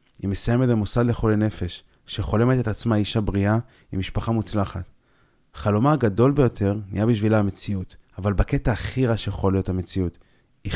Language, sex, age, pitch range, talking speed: Hebrew, male, 30-49, 100-120 Hz, 150 wpm